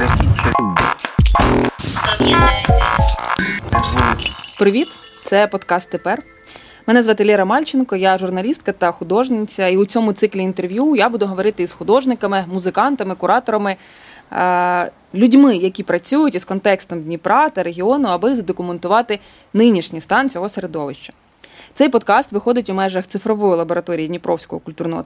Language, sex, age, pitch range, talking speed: Ukrainian, female, 20-39, 180-235 Hz, 115 wpm